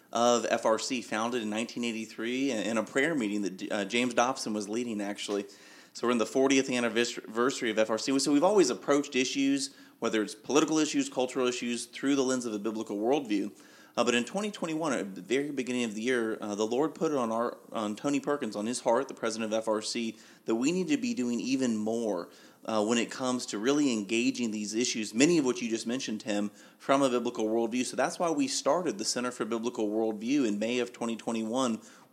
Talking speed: 205 wpm